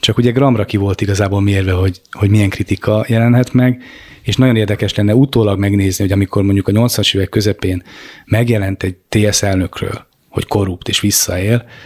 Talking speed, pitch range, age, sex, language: 170 wpm, 100-120 Hz, 30-49, male, Hungarian